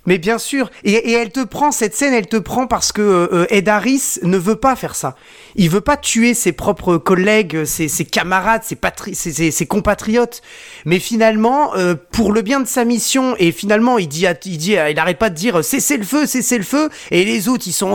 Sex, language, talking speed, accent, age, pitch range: male, French, 230 wpm, French, 30-49, 170-235 Hz